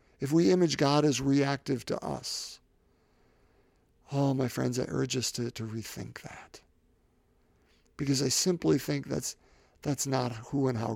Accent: American